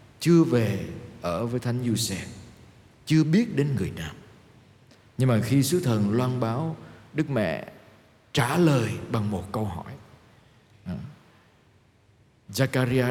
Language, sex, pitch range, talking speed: Vietnamese, male, 105-130 Hz, 130 wpm